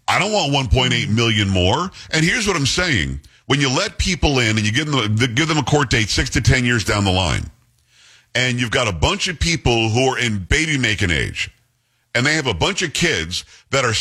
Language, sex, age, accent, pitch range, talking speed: English, male, 50-69, American, 110-150 Hz, 225 wpm